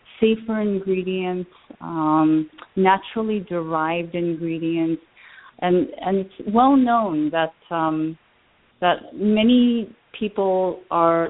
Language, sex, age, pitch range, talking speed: English, female, 30-49, 150-180 Hz, 90 wpm